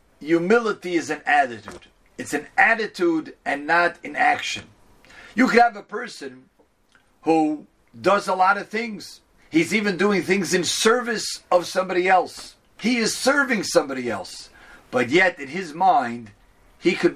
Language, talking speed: English, 150 wpm